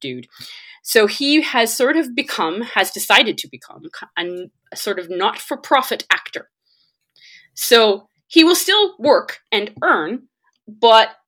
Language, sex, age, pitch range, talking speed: English, female, 30-49, 170-240 Hz, 135 wpm